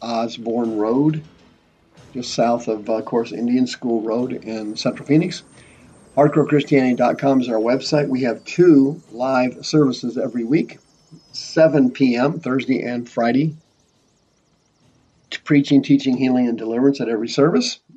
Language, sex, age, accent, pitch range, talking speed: English, male, 50-69, American, 120-145 Hz, 125 wpm